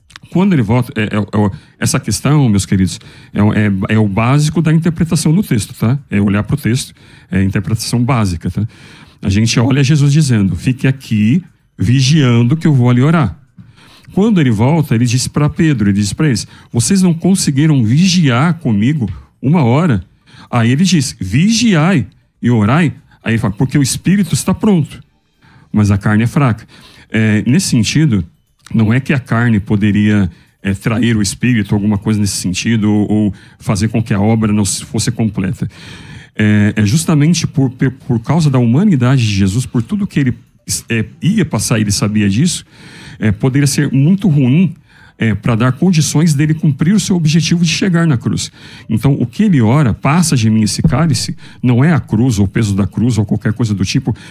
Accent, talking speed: Brazilian, 180 wpm